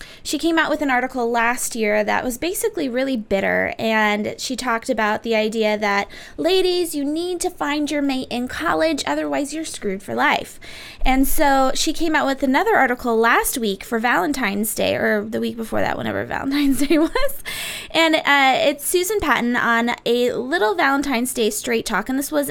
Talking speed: 190 wpm